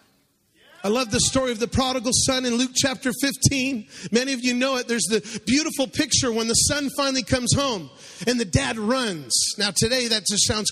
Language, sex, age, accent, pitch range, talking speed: English, male, 30-49, American, 215-265 Hz, 200 wpm